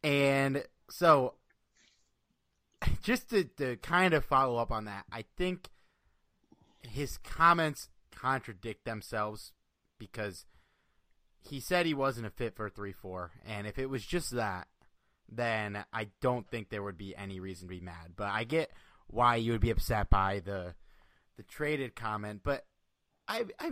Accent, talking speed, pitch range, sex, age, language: American, 155 wpm, 100-135 Hz, male, 30-49, English